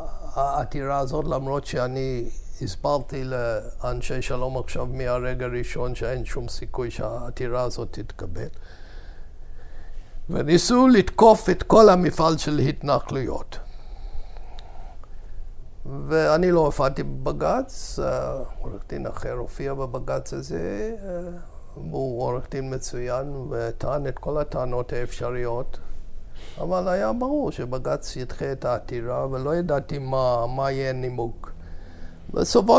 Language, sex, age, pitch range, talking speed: Hebrew, male, 60-79, 115-155 Hz, 100 wpm